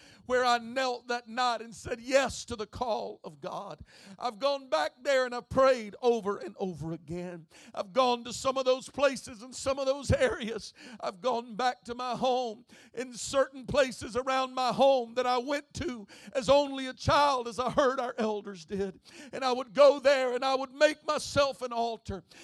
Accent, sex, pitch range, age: American, male, 220-265 Hz, 50-69